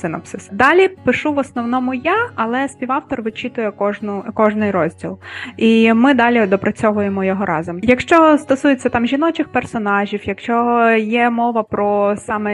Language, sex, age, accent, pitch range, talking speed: Ukrainian, female, 20-39, native, 200-240 Hz, 135 wpm